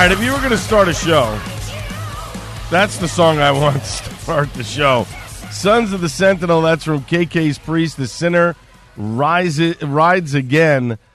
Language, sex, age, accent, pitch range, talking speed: English, male, 50-69, American, 95-135 Hz, 170 wpm